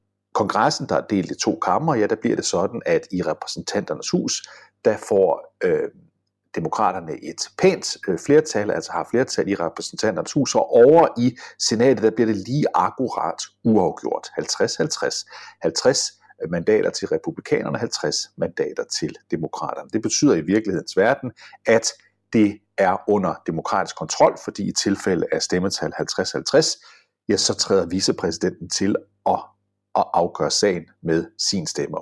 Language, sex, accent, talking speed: Danish, male, native, 140 wpm